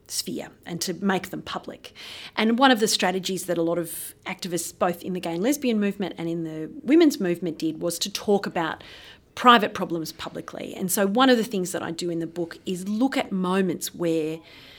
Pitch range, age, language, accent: 170-205 Hz, 30-49, English, Australian